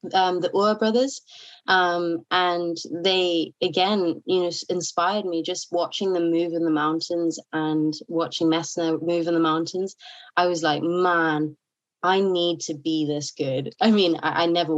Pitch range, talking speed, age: 165-200 Hz, 165 wpm, 20-39